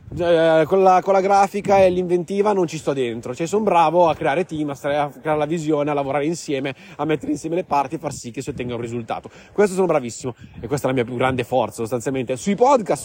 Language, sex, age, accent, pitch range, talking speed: Italian, male, 30-49, native, 135-180 Hz, 235 wpm